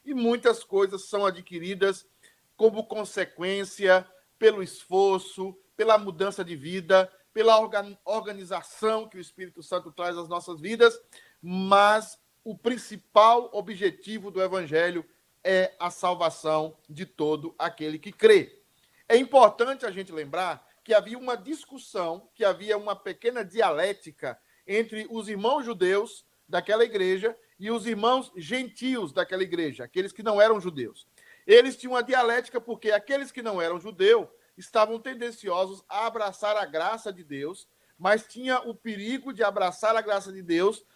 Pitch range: 185-235 Hz